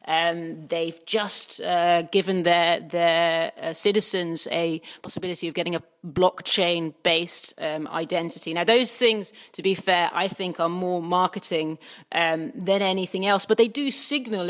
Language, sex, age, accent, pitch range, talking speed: English, female, 30-49, British, 175-230 Hz, 150 wpm